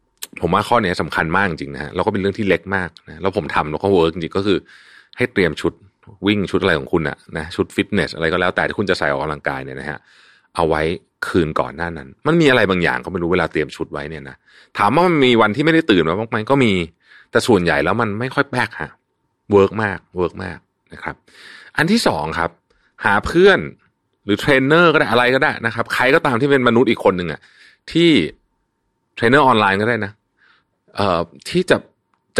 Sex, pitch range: male, 85-120 Hz